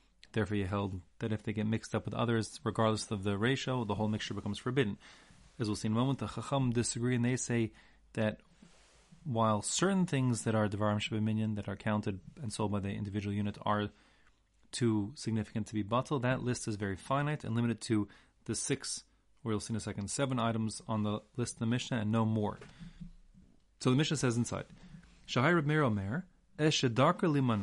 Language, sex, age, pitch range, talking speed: English, male, 30-49, 105-130 Hz, 185 wpm